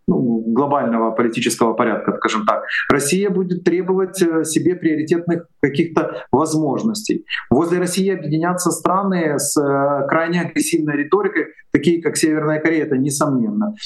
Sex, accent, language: male, native, Russian